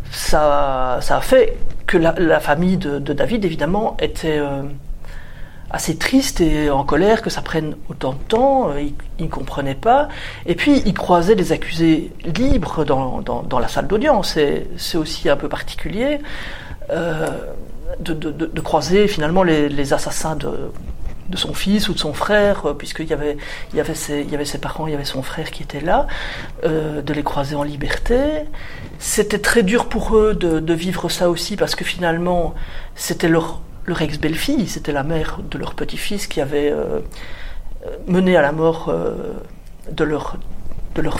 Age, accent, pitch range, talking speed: 40-59, French, 150-200 Hz, 190 wpm